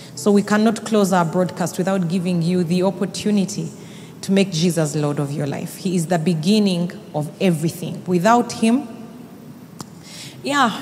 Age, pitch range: 30-49, 170-210 Hz